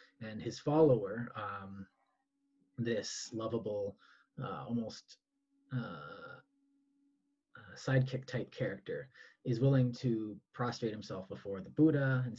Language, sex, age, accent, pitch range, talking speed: English, male, 30-49, American, 110-150 Hz, 105 wpm